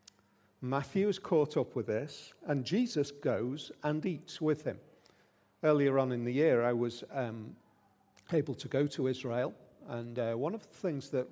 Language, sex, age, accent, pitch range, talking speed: English, male, 40-59, British, 120-160 Hz, 175 wpm